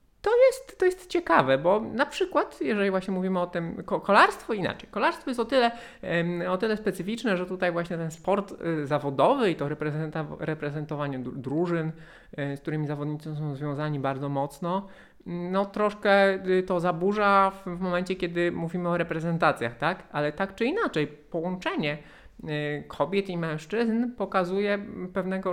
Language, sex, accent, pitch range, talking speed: Polish, male, native, 145-195 Hz, 145 wpm